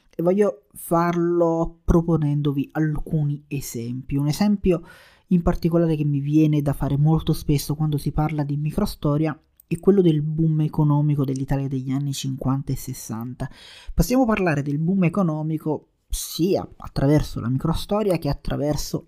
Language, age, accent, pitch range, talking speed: Italian, 30-49, native, 135-155 Hz, 140 wpm